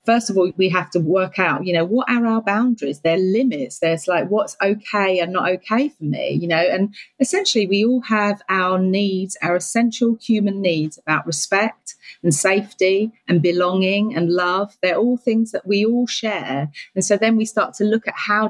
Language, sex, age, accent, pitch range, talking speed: English, female, 30-49, British, 175-225 Hz, 200 wpm